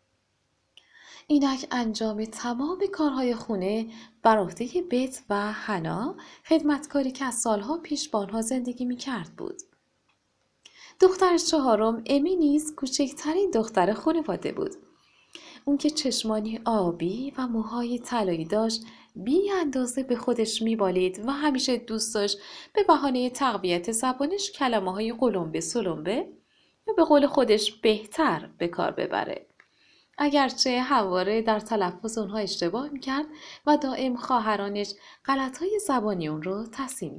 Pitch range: 220-295 Hz